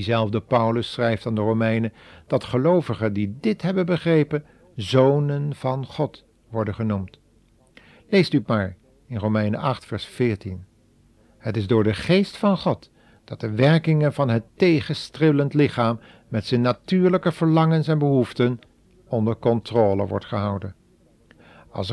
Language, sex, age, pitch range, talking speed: Dutch, male, 50-69, 110-145 Hz, 135 wpm